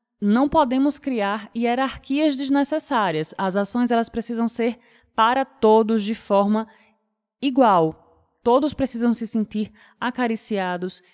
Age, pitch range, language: 20-39, 180-235 Hz, Portuguese